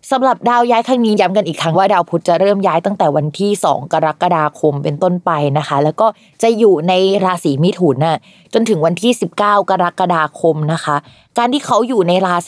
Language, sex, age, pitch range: Thai, female, 20-39, 165-205 Hz